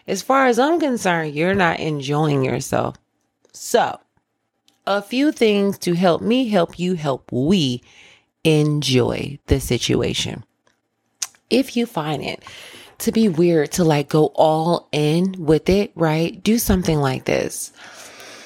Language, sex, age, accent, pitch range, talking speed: English, female, 30-49, American, 155-200 Hz, 135 wpm